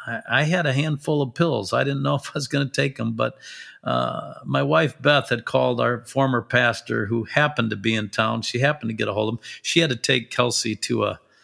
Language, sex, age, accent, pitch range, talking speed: English, male, 50-69, American, 110-130 Hz, 245 wpm